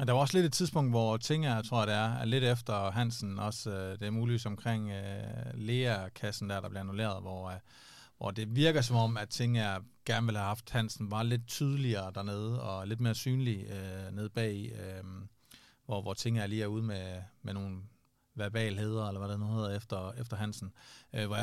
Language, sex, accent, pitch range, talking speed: Danish, male, native, 105-120 Hz, 215 wpm